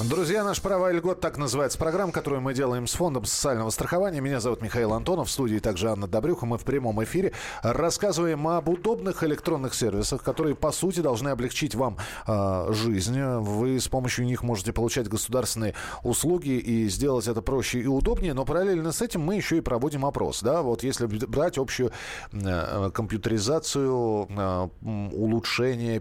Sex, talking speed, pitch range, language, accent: male, 170 wpm, 105-135 Hz, Russian, native